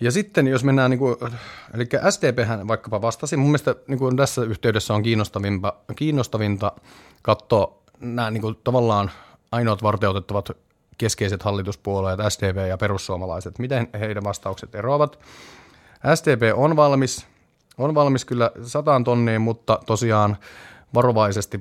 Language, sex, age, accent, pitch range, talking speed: Finnish, male, 30-49, native, 100-130 Hz, 120 wpm